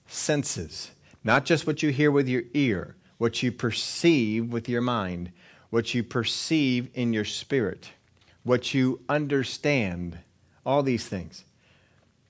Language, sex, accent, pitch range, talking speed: English, male, American, 105-130 Hz, 130 wpm